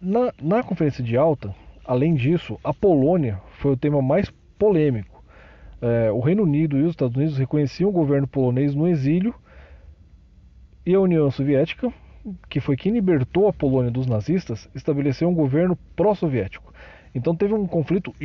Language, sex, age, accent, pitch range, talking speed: Portuguese, male, 40-59, Brazilian, 110-170 Hz, 155 wpm